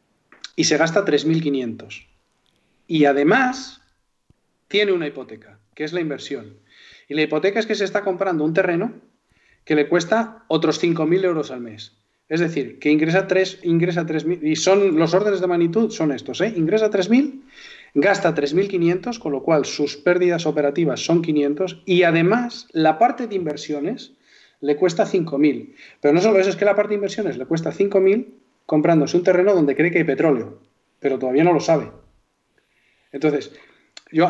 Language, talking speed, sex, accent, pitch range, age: Spanish, 170 wpm, male, Spanish, 145-195 Hz, 40-59